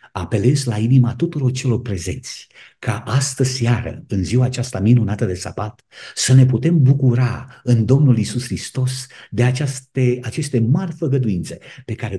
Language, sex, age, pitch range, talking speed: Romanian, male, 50-69, 105-130 Hz, 150 wpm